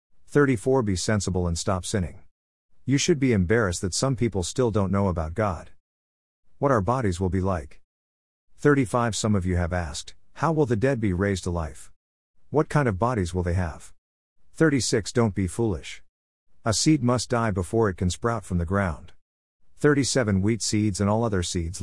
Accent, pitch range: American, 90-115 Hz